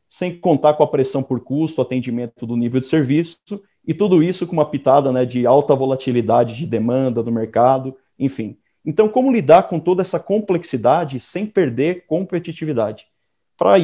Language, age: Portuguese, 40-59